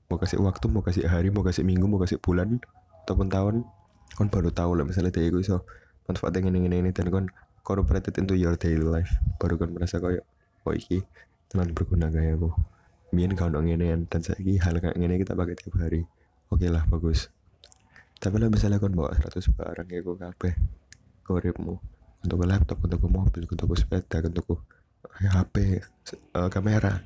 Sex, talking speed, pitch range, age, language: male, 180 wpm, 85-100 Hz, 20-39, Indonesian